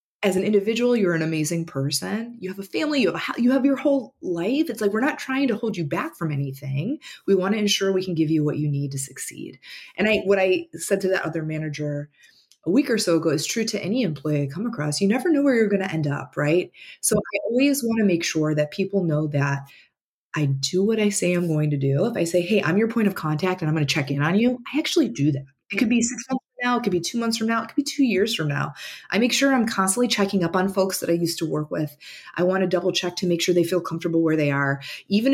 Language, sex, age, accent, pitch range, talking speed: English, female, 20-39, American, 160-215 Hz, 285 wpm